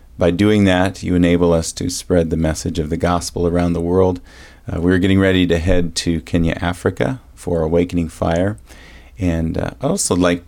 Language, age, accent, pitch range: English, 40-59, American, 85-95 Hz